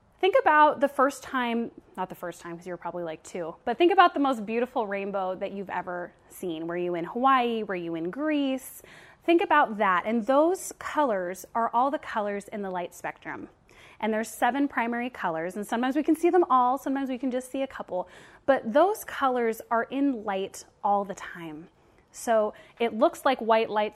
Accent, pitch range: American, 200-275 Hz